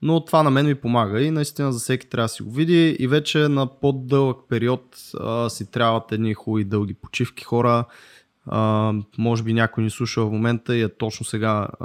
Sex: male